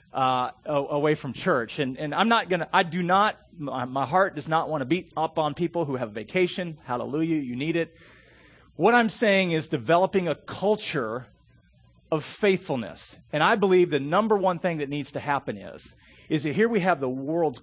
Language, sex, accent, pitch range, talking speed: English, male, American, 140-200 Hz, 200 wpm